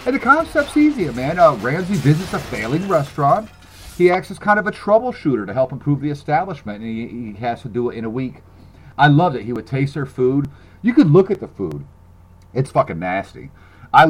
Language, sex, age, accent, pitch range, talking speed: English, male, 40-59, American, 120-185 Hz, 215 wpm